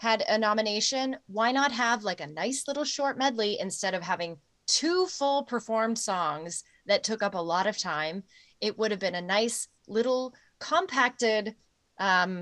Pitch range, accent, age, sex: 180-230 Hz, American, 30-49, female